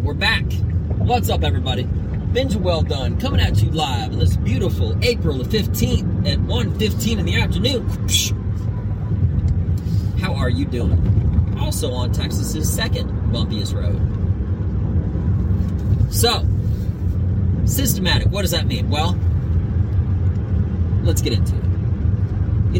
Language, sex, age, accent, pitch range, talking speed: English, male, 30-49, American, 95-105 Hz, 120 wpm